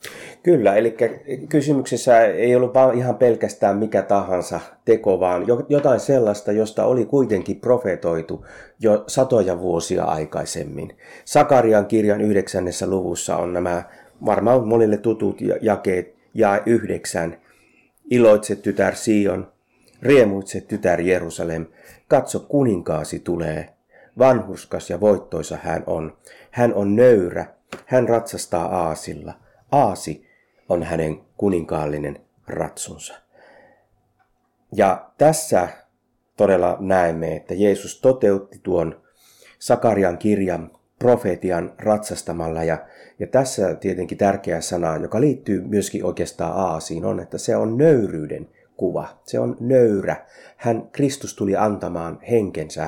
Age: 30-49